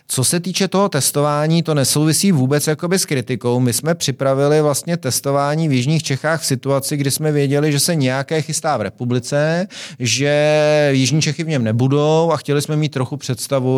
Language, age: Czech, 30-49